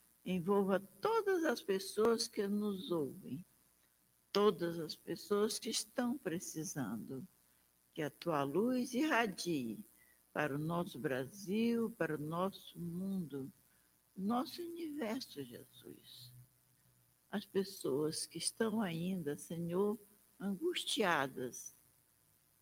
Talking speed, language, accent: 95 wpm, Portuguese, Brazilian